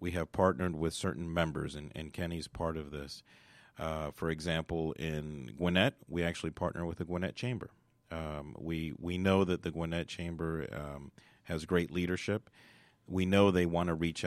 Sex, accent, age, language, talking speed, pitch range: male, American, 40-59, English, 175 wpm, 80-95 Hz